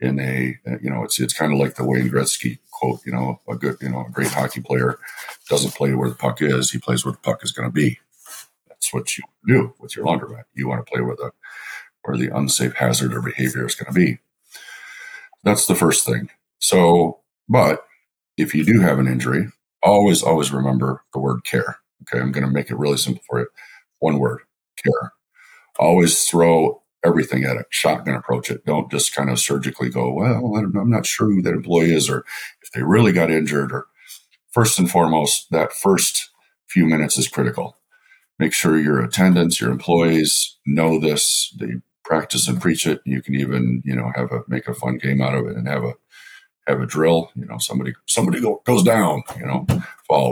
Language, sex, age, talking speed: English, male, 50-69, 210 wpm